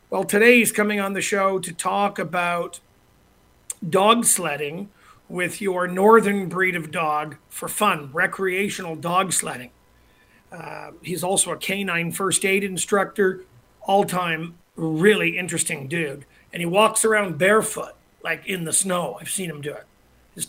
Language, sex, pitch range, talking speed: English, male, 165-210 Hz, 150 wpm